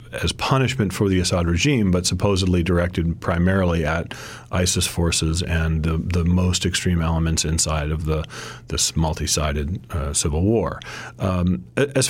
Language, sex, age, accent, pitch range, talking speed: English, male, 40-59, American, 85-95 Hz, 145 wpm